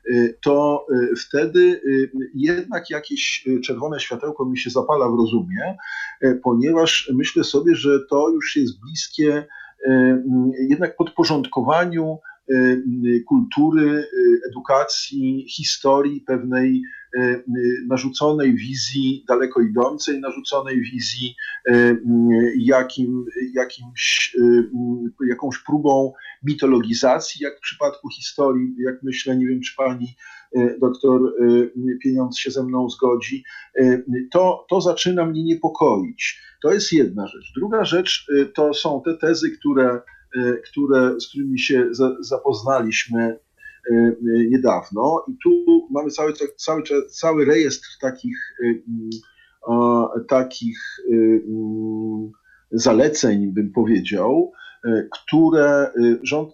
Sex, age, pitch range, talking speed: male, 50-69, 125-170 Hz, 90 wpm